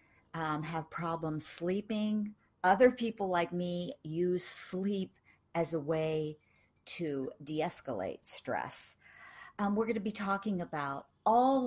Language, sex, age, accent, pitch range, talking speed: English, female, 50-69, American, 160-220 Hz, 125 wpm